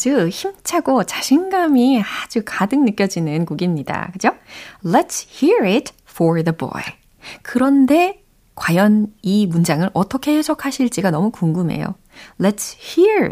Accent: native